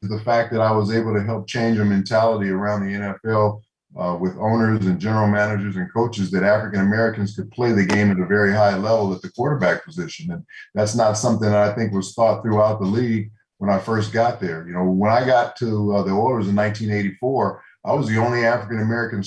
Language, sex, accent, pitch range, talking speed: English, male, American, 105-120 Hz, 220 wpm